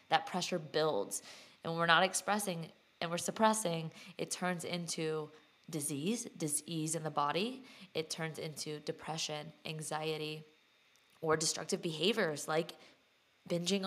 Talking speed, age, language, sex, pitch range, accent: 120 wpm, 20-39, English, female, 160-185 Hz, American